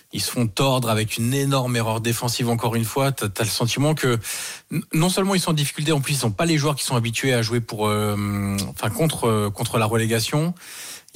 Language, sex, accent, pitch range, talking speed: French, male, French, 110-135 Hz, 235 wpm